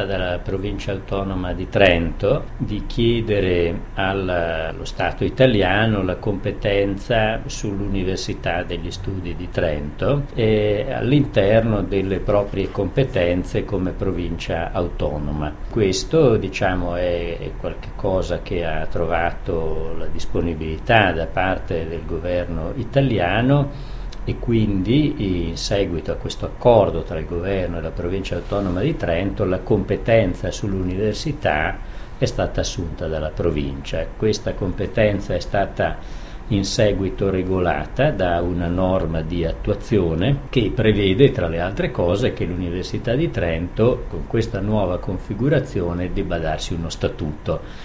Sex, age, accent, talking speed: male, 50-69, native, 115 wpm